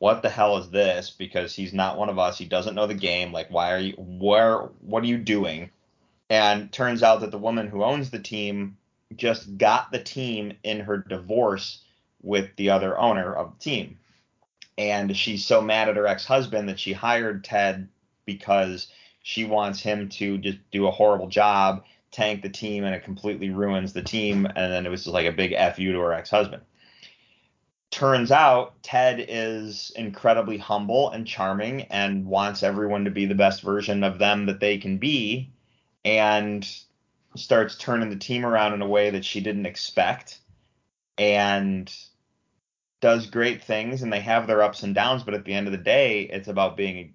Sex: male